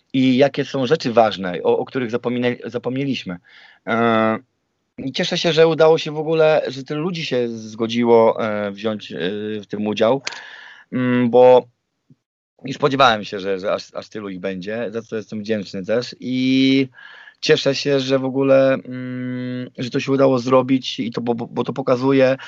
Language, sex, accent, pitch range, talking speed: Polish, male, native, 115-135 Hz, 170 wpm